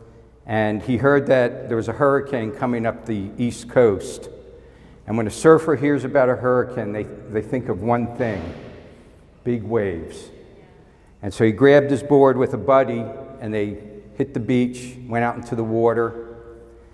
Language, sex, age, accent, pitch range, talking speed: English, male, 60-79, American, 110-135 Hz, 170 wpm